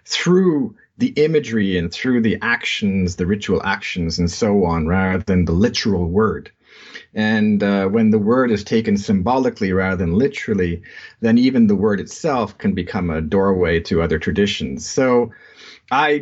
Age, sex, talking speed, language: 40-59, male, 160 wpm, English